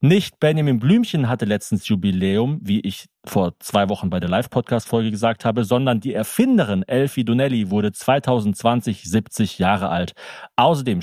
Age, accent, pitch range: 40-59, German, 110-140 Hz